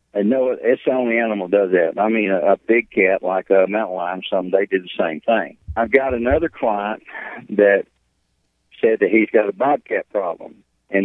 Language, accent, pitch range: English, American, 95-110 Hz